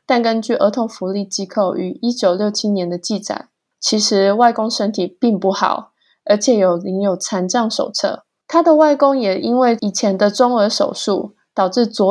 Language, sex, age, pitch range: Chinese, female, 20-39, 195-250 Hz